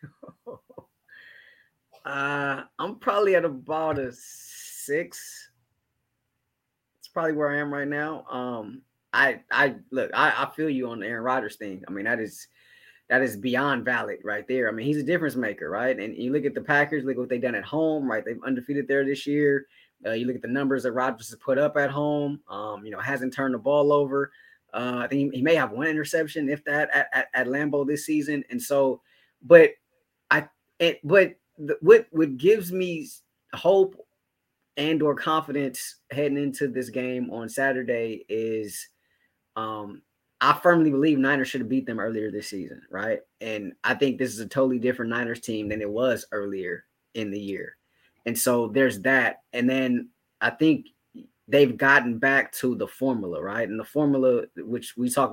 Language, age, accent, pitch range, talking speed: English, 20-39, American, 120-145 Hz, 185 wpm